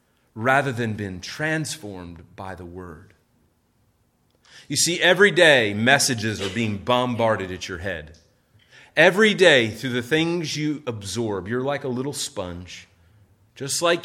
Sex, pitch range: male, 105-155 Hz